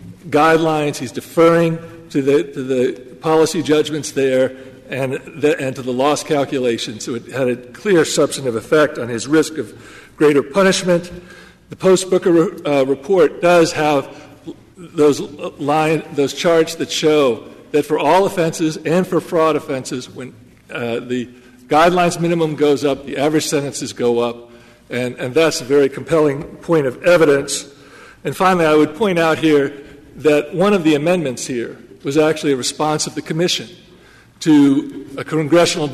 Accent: American